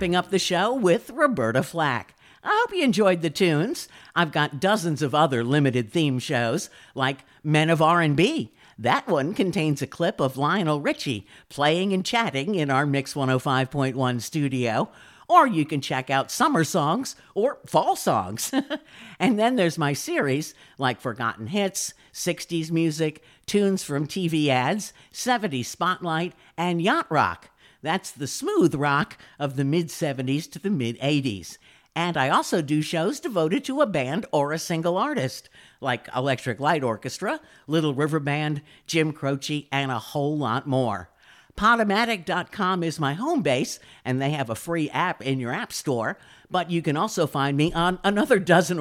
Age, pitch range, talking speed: 50-69, 140-185 Hz, 160 wpm